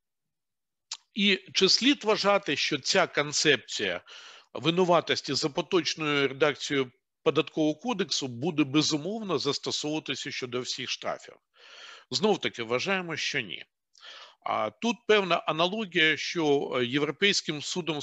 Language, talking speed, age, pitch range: Ukrainian, 100 wpm, 50-69, 140-190 Hz